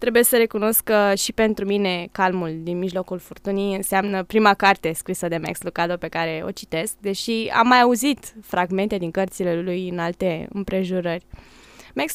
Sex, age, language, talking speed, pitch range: female, 20-39, Romanian, 170 wpm, 190-240 Hz